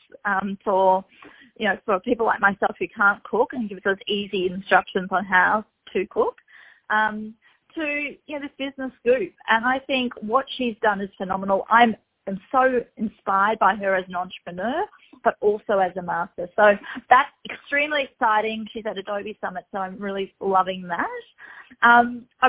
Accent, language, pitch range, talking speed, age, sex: Australian, English, 195-245 Hz, 170 wpm, 30-49, female